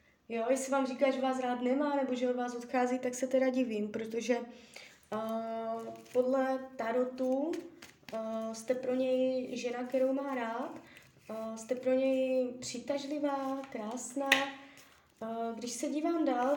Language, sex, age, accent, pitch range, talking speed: Czech, female, 20-39, native, 230-275 Hz, 145 wpm